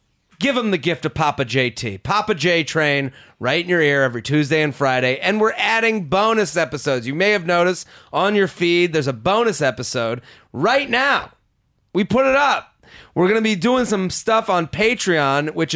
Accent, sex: American, male